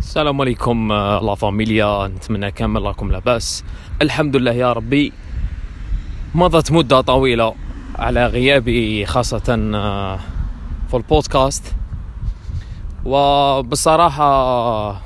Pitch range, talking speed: 95-140 Hz, 85 wpm